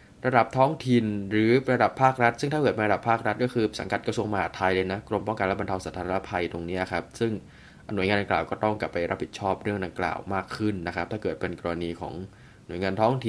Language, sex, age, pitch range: Thai, male, 20-39, 100-120 Hz